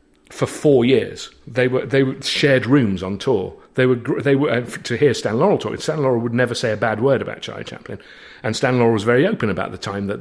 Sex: male